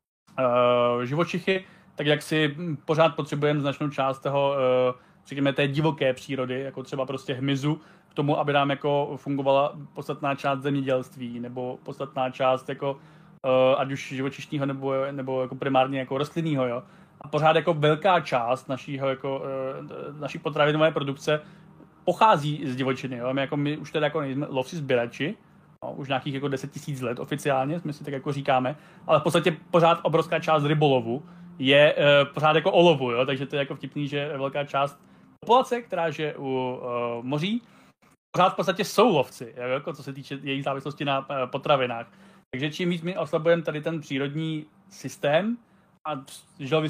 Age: 30-49